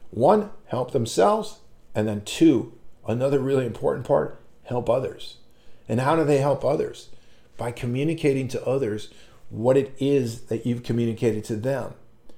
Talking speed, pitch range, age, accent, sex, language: 145 wpm, 120-145 Hz, 50-69, American, male, English